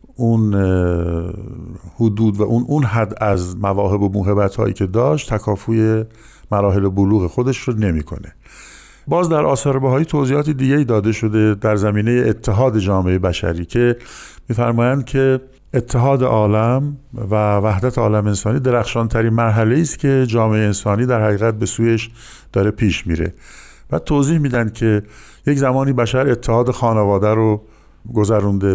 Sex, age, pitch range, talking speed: male, 50-69, 100-120 Hz, 140 wpm